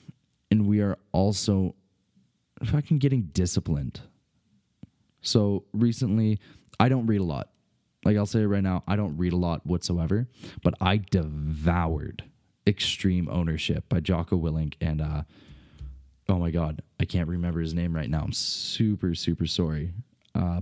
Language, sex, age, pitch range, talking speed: English, male, 20-39, 85-105 Hz, 145 wpm